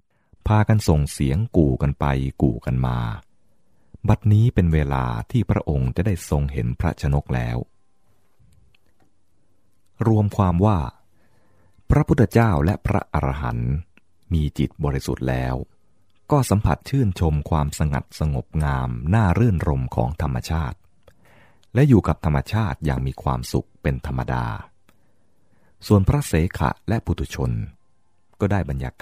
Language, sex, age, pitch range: English, male, 30-49, 70-105 Hz